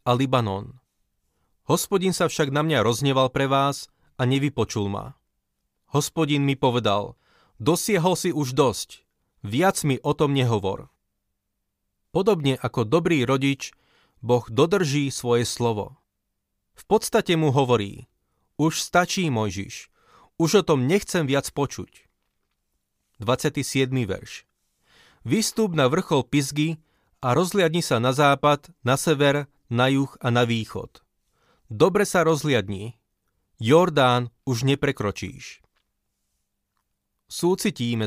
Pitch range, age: 120-155 Hz, 30-49